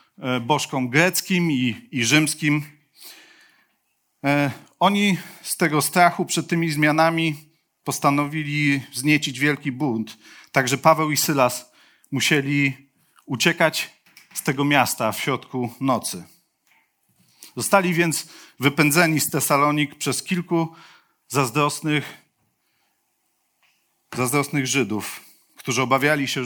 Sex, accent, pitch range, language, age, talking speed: male, native, 140-170 Hz, Polish, 40-59, 95 wpm